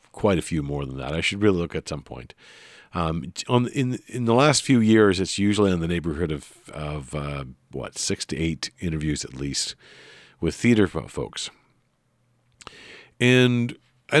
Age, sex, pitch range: 50-69, male, 85-120 Hz